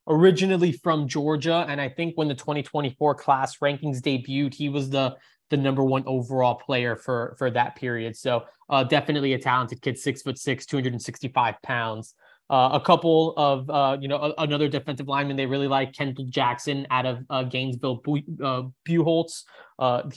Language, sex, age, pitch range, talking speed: English, male, 20-39, 130-145 Hz, 175 wpm